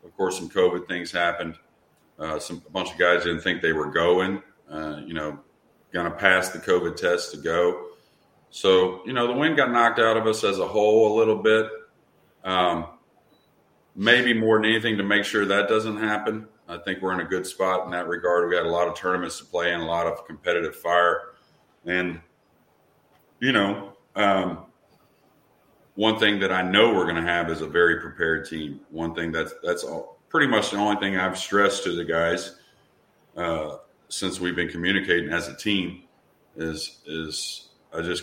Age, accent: 40-59, American